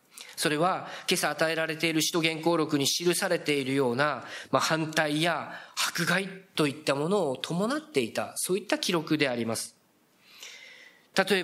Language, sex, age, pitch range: Japanese, male, 40-59, 150-210 Hz